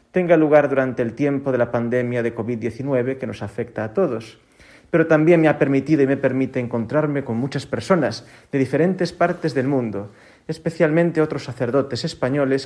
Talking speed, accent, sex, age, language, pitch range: 170 wpm, Spanish, male, 40-59, Spanish, 120-160 Hz